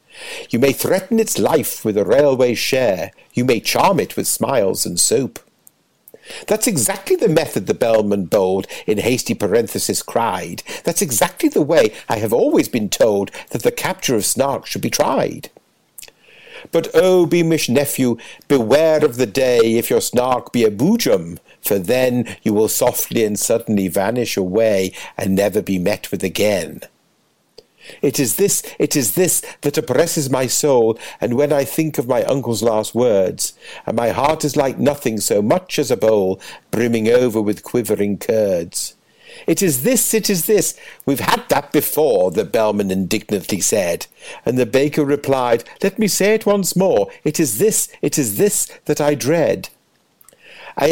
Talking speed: 170 wpm